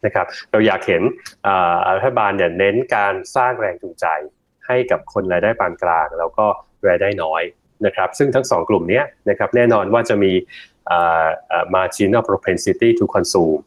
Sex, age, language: male, 20-39, English